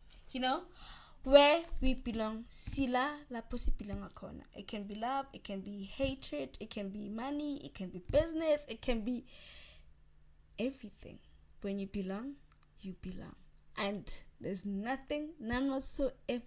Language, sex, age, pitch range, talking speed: English, female, 20-39, 205-295 Hz, 130 wpm